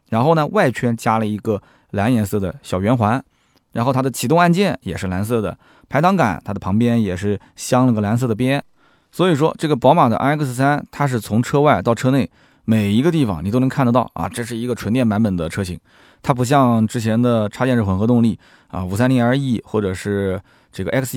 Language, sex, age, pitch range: Chinese, male, 20-39, 105-135 Hz